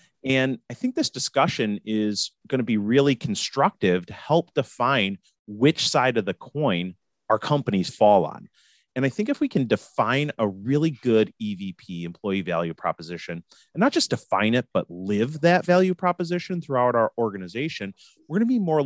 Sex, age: male, 30-49